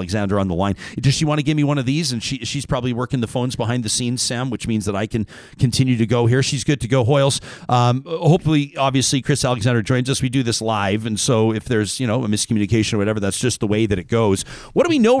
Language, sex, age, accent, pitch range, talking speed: English, male, 40-59, American, 115-150 Hz, 275 wpm